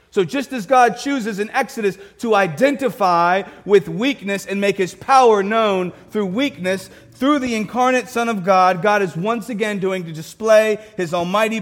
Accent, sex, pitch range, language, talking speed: American, male, 185-235 Hz, English, 170 wpm